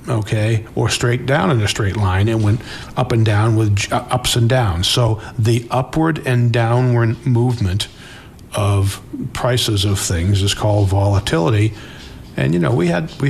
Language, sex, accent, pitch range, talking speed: English, male, American, 105-125 Hz, 165 wpm